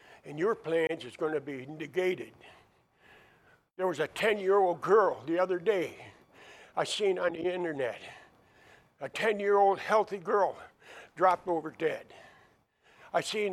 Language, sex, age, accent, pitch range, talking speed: English, male, 60-79, American, 180-215 Hz, 135 wpm